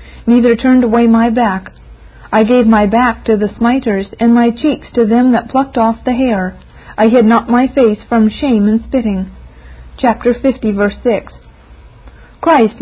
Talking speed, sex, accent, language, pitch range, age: 170 wpm, female, American, English, 215-255 Hz, 50-69